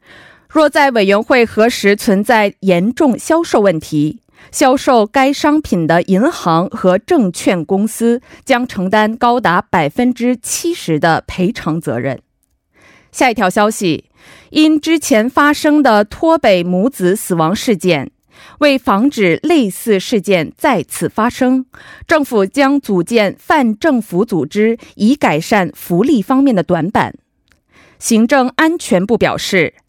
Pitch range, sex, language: 185-280 Hz, female, Korean